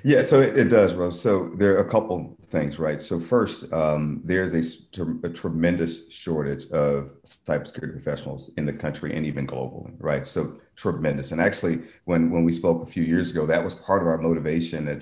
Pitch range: 75-85 Hz